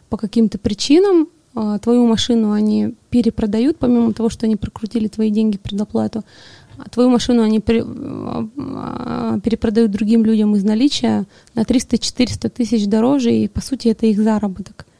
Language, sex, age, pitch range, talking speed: Russian, female, 20-39, 215-245 Hz, 130 wpm